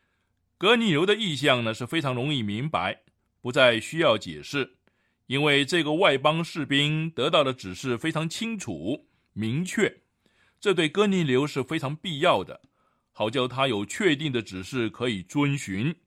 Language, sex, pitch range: Chinese, male, 115-165 Hz